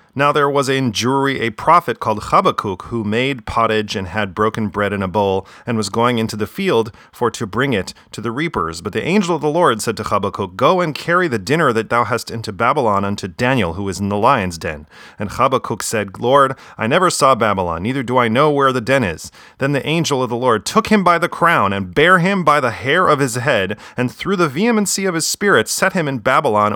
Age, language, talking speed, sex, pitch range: 30-49, English, 240 wpm, male, 105-145 Hz